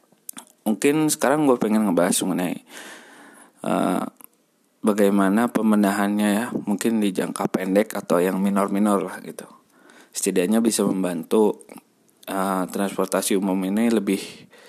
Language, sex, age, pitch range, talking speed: Indonesian, male, 20-39, 100-110 Hz, 110 wpm